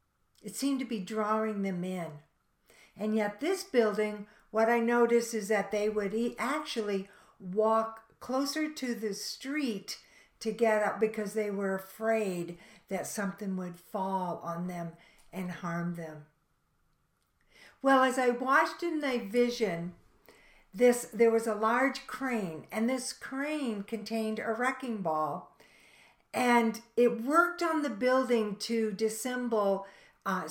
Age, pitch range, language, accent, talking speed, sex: 60-79, 195-245 Hz, English, American, 135 wpm, female